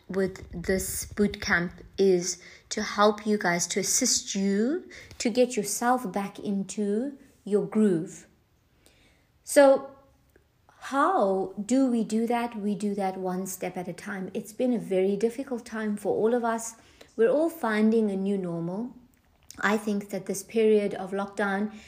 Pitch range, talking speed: 200-245 Hz, 150 wpm